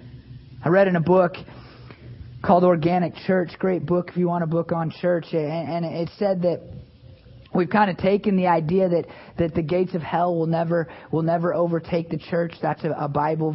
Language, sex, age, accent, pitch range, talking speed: English, male, 30-49, American, 145-185 Hz, 195 wpm